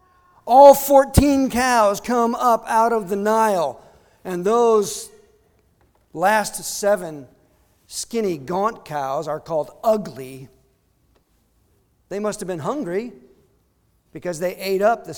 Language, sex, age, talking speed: English, male, 50-69, 115 wpm